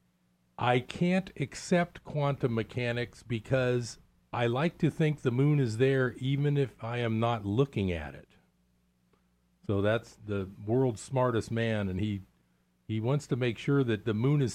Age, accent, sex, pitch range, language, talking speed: 50-69, American, male, 105-140 Hz, English, 160 wpm